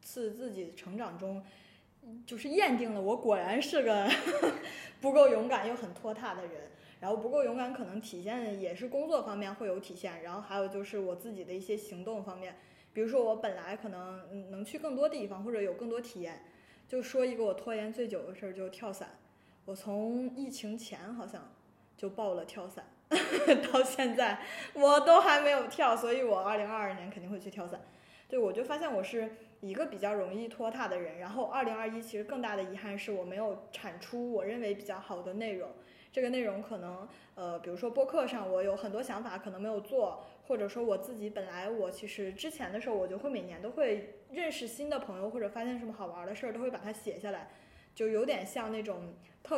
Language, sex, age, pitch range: Chinese, female, 20-39, 195-240 Hz